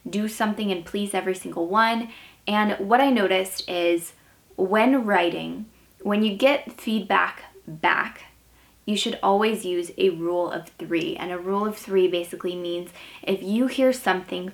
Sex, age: female, 20-39